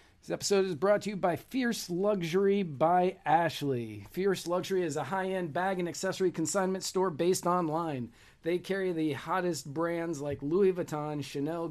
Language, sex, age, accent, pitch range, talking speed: English, male, 40-59, American, 145-185 Hz, 165 wpm